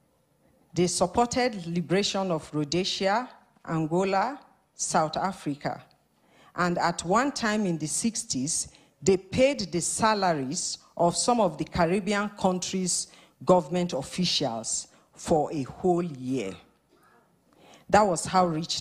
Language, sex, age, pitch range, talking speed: English, female, 50-69, 155-195 Hz, 110 wpm